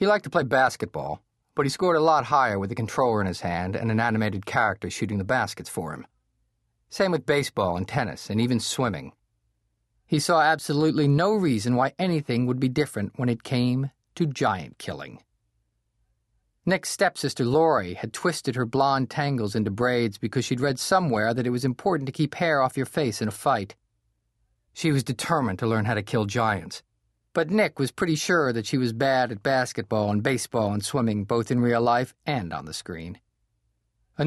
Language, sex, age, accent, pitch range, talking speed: English, male, 40-59, American, 110-145 Hz, 195 wpm